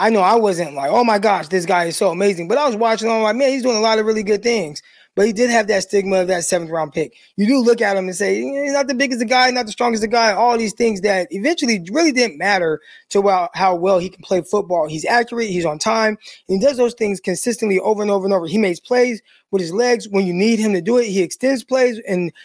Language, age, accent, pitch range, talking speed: English, 20-39, American, 195-240 Hz, 280 wpm